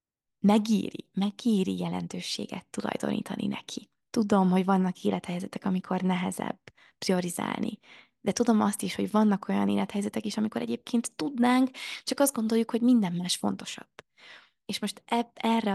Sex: female